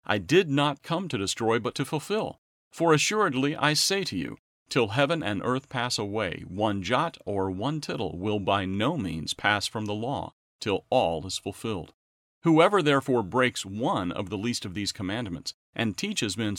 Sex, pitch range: male, 100-135 Hz